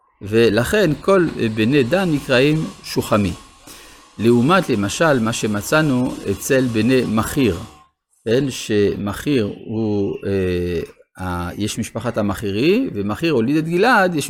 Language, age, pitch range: Hebrew, 50-69, 105-140 Hz